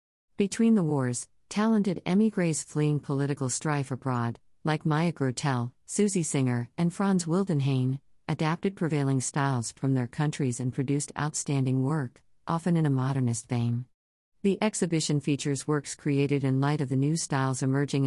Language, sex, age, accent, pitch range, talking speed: English, female, 50-69, American, 130-155 Hz, 145 wpm